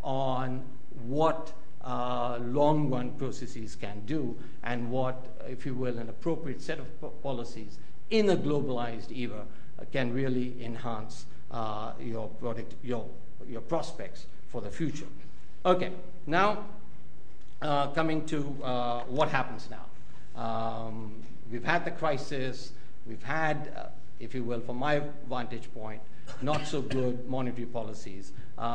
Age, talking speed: 60-79, 135 wpm